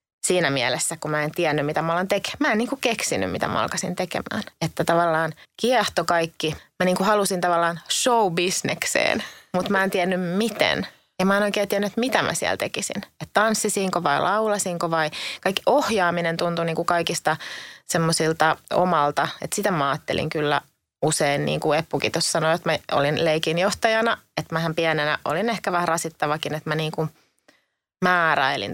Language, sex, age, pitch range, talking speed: Finnish, female, 20-39, 155-190 Hz, 165 wpm